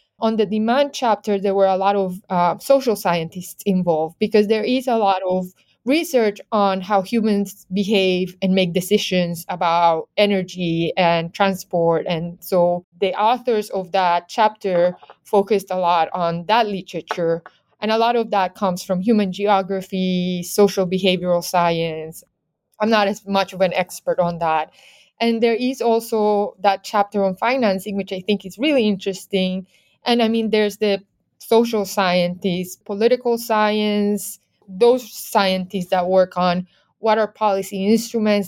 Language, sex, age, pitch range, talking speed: English, female, 20-39, 180-215 Hz, 150 wpm